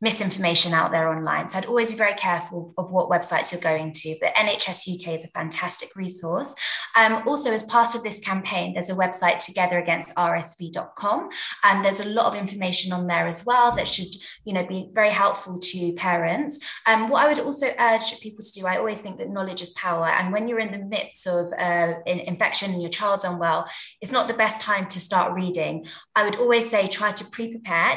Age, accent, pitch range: 20-39, British, 180-225 Hz